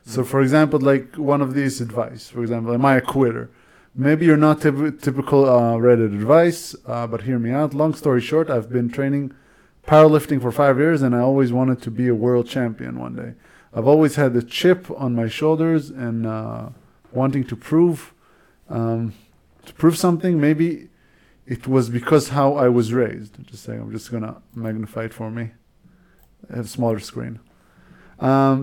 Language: Hebrew